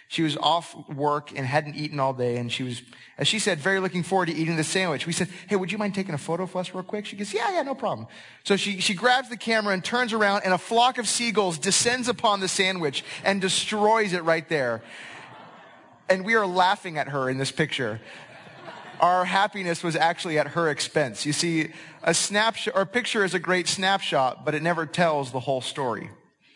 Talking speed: 220 wpm